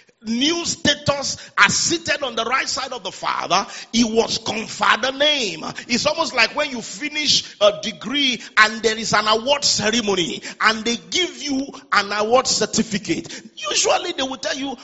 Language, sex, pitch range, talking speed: English, male, 195-275 Hz, 170 wpm